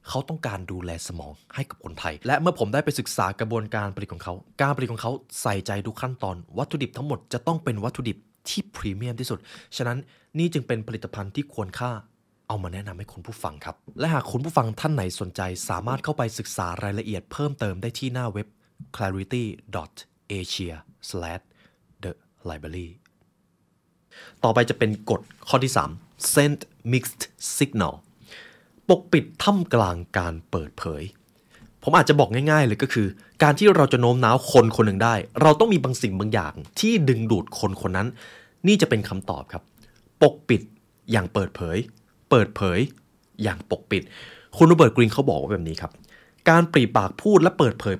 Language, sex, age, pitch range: Thai, male, 20-39, 100-140 Hz